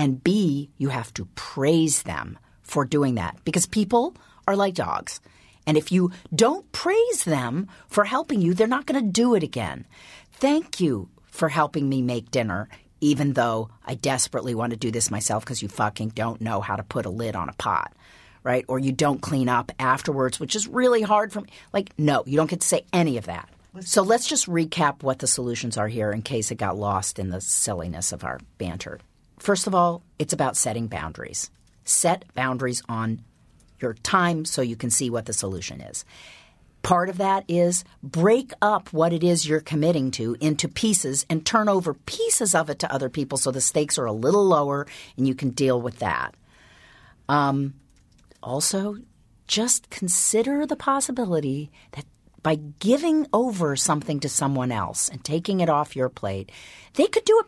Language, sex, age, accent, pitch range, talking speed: English, female, 50-69, American, 120-185 Hz, 190 wpm